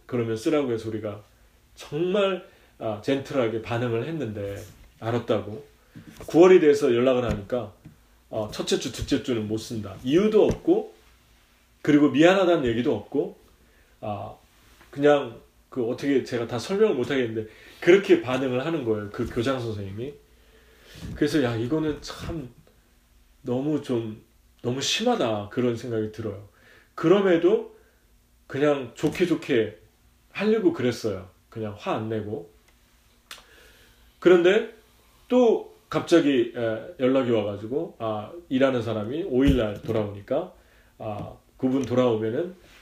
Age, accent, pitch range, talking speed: 30-49, Korean, 110-175 Hz, 105 wpm